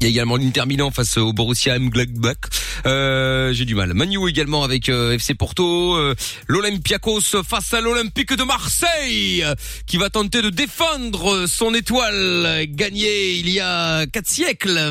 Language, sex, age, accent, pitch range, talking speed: French, male, 30-49, French, 125-200 Hz, 155 wpm